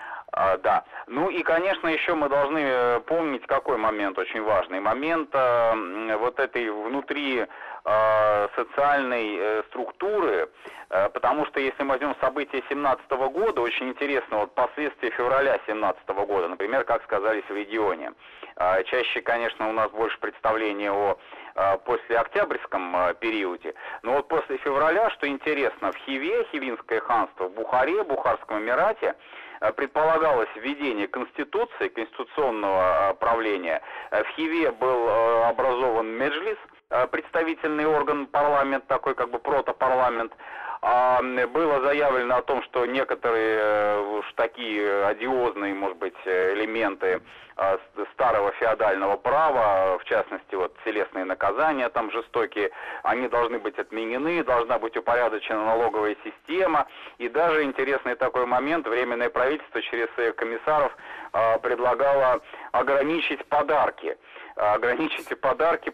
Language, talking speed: Russian, 120 wpm